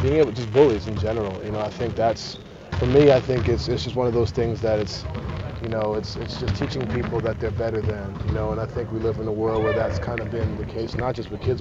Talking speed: 290 wpm